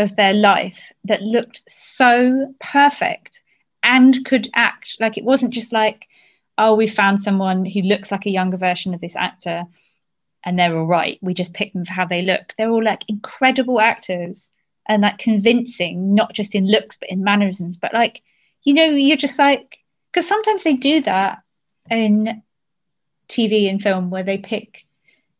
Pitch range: 185-230 Hz